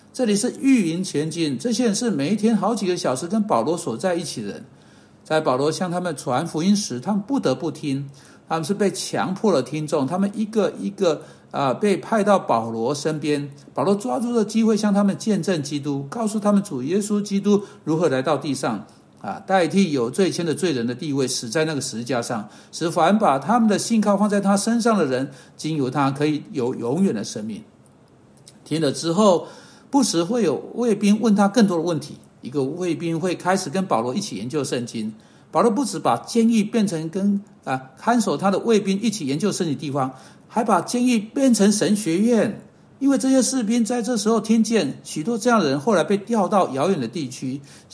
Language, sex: Chinese, male